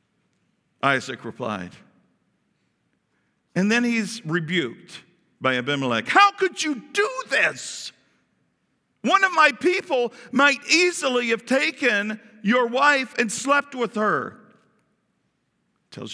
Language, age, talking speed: English, 50-69, 105 wpm